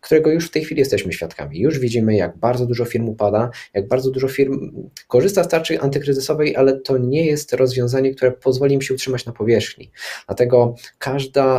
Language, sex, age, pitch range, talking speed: Polish, male, 20-39, 105-135 Hz, 185 wpm